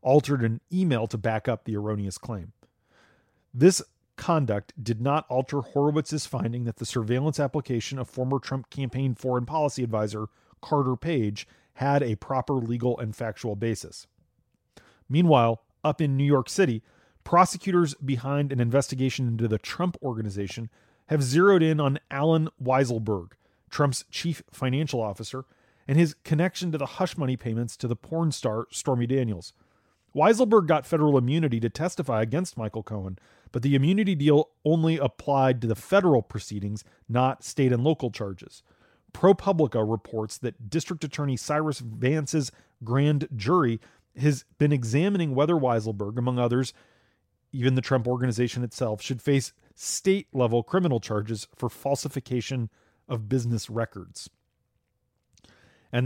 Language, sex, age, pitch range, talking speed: English, male, 40-59, 115-150 Hz, 140 wpm